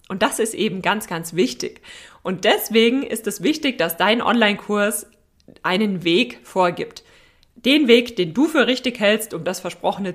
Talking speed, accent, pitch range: 165 wpm, German, 180-245 Hz